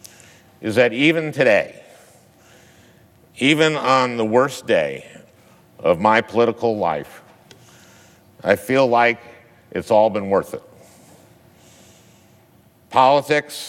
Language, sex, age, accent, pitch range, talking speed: English, male, 50-69, American, 105-130 Hz, 95 wpm